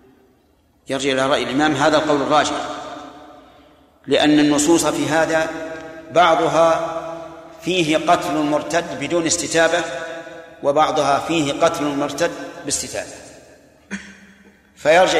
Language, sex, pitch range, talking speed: Arabic, male, 145-165 Hz, 90 wpm